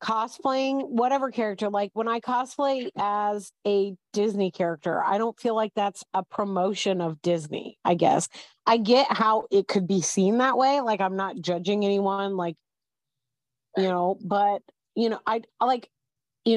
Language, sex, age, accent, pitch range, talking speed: English, female, 30-49, American, 185-235 Hz, 165 wpm